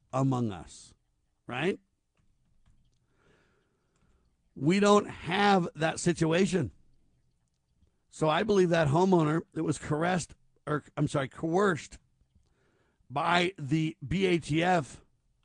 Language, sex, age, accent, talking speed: English, male, 60-79, American, 90 wpm